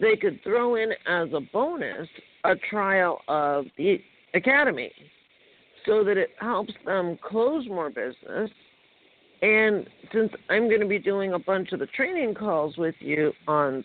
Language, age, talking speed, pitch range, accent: English, 50-69, 155 wpm, 155-220 Hz, American